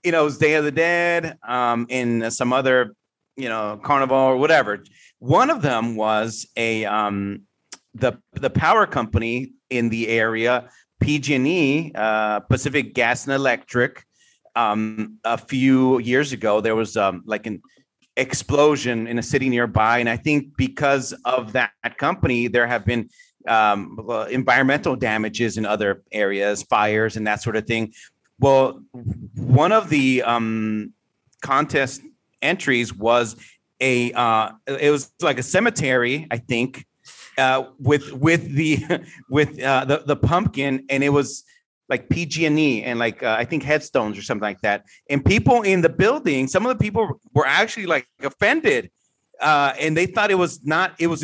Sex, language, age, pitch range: male, English, 40-59, 115-150 Hz